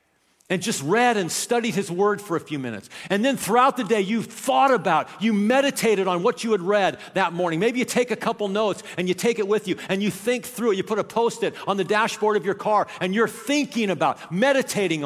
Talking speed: 240 wpm